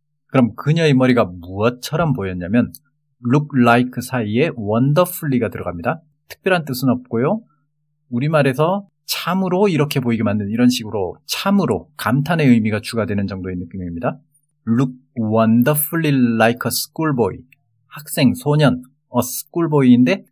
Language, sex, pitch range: Korean, male, 120-150 Hz